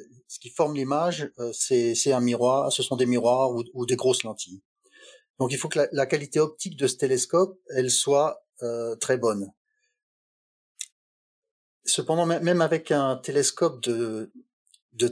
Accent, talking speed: French, 160 wpm